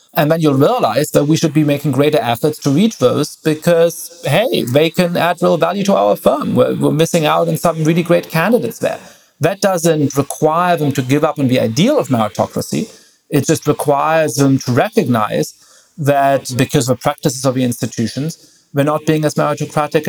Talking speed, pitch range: 195 wpm, 135-165 Hz